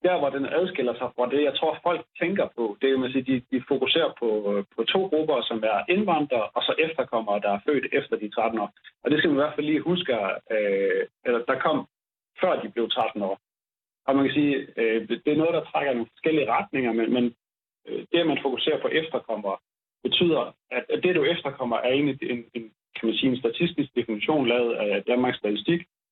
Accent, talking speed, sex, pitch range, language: native, 200 wpm, male, 115-150 Hz, Danish